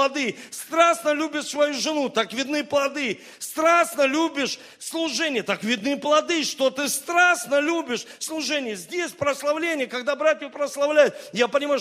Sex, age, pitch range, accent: male, 40-59, 215-300 Hz, native